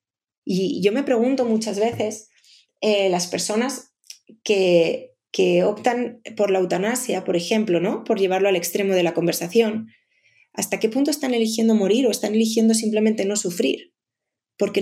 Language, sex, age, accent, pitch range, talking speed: Spanish, female, 20-39, Spanish, 200-245 Hz, 150 wpm